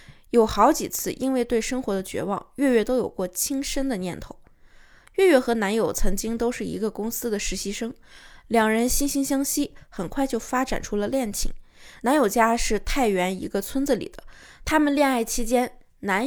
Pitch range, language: 210-275 Hz, Chinese